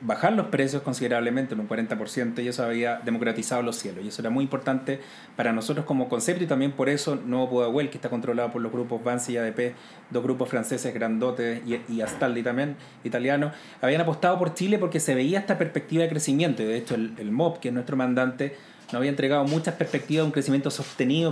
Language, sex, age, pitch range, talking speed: Spanish, male, 30-49, 125-160 Hz, 215 wpm